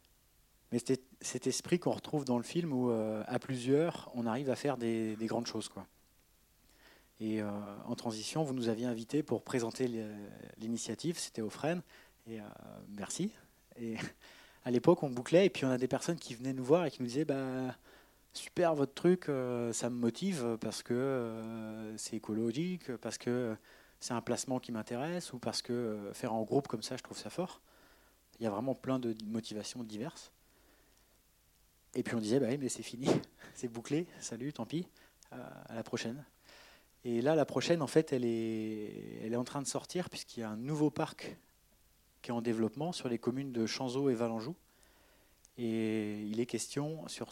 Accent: French